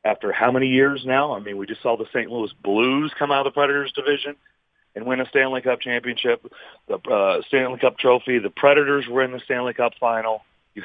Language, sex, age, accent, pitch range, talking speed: English, male, 40-59, American, 115-140 Hz, 220 wpm